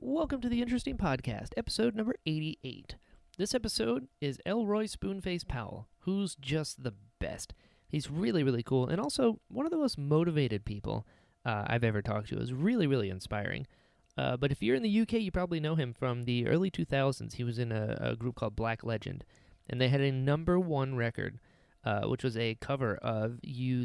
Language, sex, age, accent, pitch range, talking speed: English, male, 30-49, American, 120-160 Hz, 195 wpm